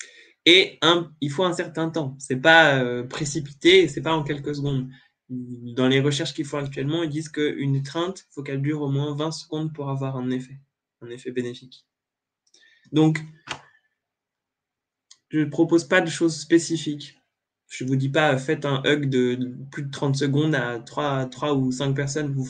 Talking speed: 190 wpm